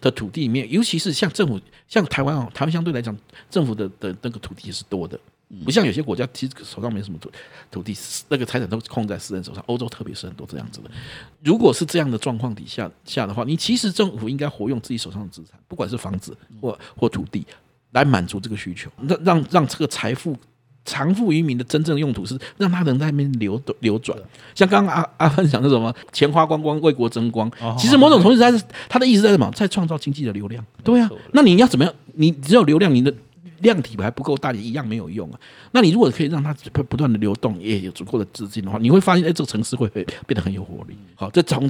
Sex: male